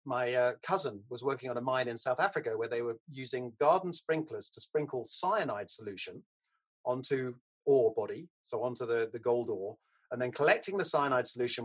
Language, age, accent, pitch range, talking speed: English, 40-59, British, 125-205 Hz, 185 wpm